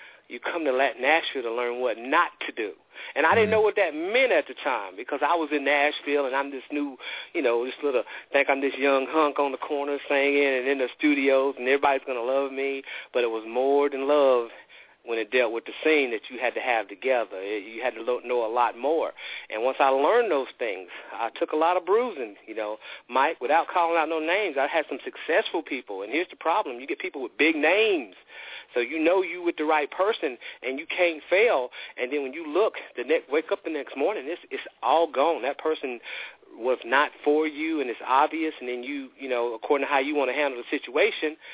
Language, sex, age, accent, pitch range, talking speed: English, male, 40-59, American, 135-185 Hz, 235 wpm